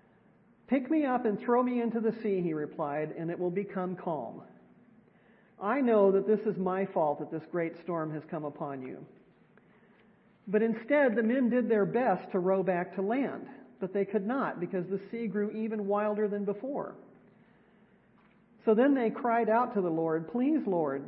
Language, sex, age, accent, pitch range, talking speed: English, male, 50-69, American, 180-225 Hz, 185 wpm